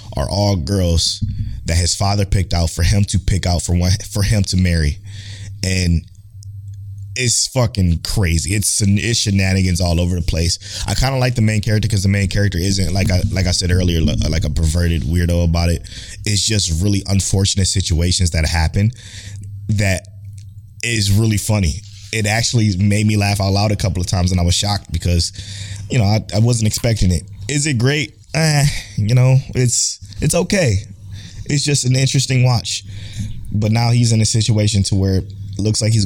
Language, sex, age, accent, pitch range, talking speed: English, male, 20-39, American, 95-110 Hz, 190 wpm